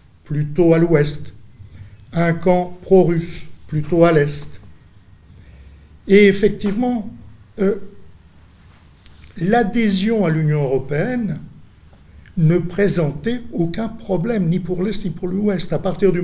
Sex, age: male, 60-79